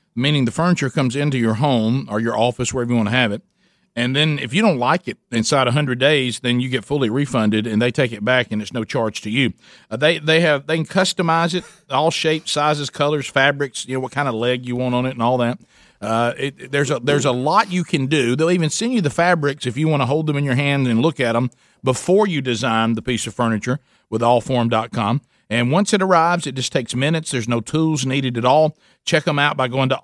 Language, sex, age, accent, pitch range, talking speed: English, male, 40-59, American, 125-165 Hz, 255 wpm